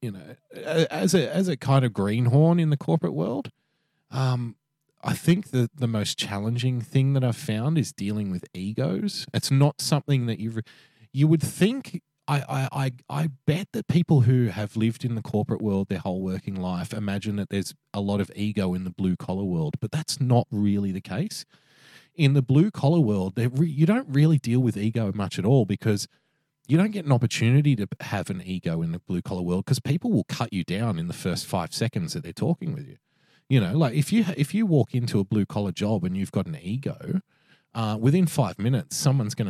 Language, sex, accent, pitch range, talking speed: English, male, Australian, 105-155 Hz, 215 wpm